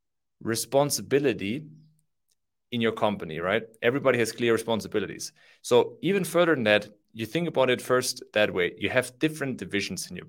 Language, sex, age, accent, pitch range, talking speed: English, male, 30-49, German, 110-140 Hz, 155 wpm